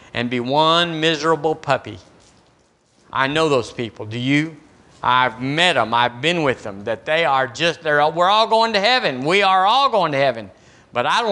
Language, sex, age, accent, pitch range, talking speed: English, male, 50-69, American, 135-170 Hz, 190 wpm